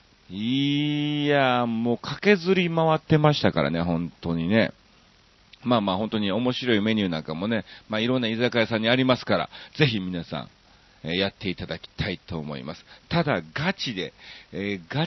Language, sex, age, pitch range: Japanese, male, 40-59, 95-145 Hz